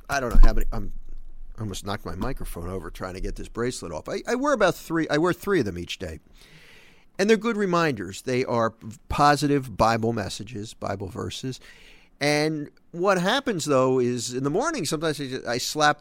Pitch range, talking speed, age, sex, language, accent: 110-150 Hz, 195 wpm, 50-69, male, English, American